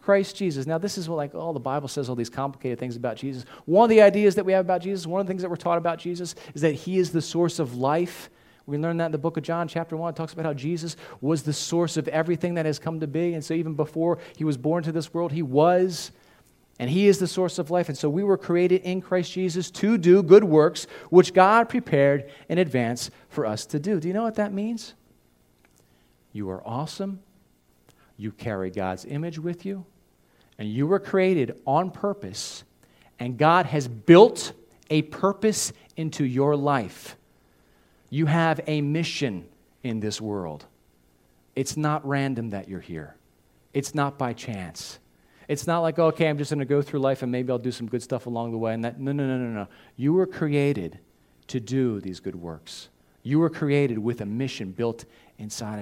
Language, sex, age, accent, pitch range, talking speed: English, male, 40-59, American, 110-170 Hz, 215 wpm